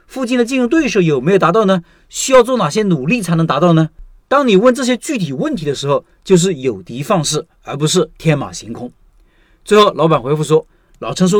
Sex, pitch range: male, 150-195 Hz